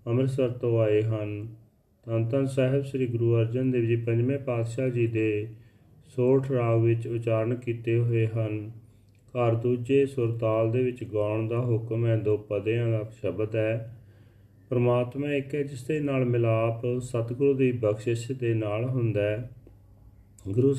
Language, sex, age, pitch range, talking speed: Punjabi, male, 40-59, 110-130 Hz, 145 wpm